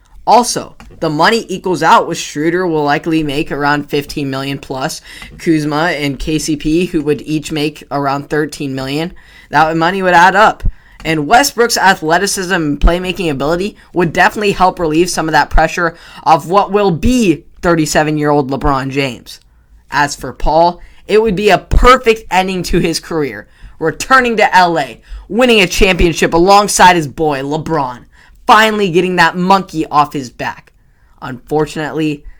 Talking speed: 150 wpm